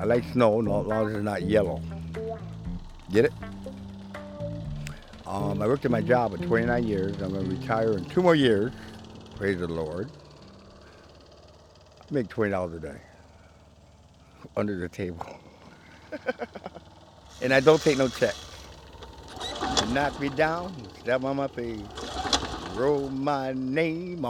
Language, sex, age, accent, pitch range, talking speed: English, male, 60-79, American, 95-125 Hz, 130 wpm